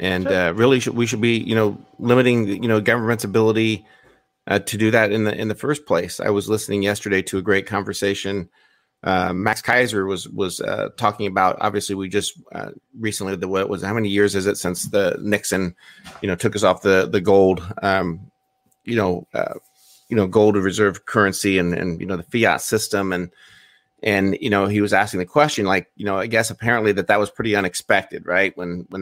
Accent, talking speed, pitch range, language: American, 215 wpm, 95-110 Hz, English